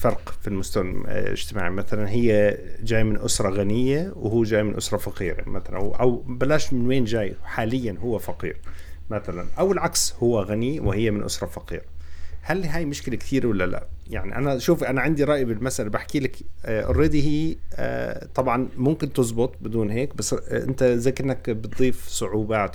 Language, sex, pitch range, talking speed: Arabic, male, 100-125 Hz, 165 wpm